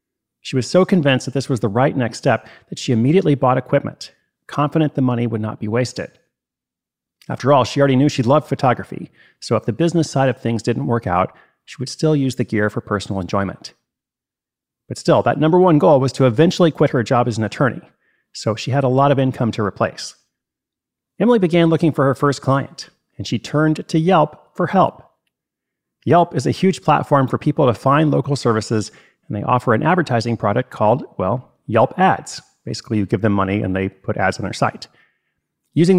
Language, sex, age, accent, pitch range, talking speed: English, male, 40-59, American, 115-150 Hz, 205 wpm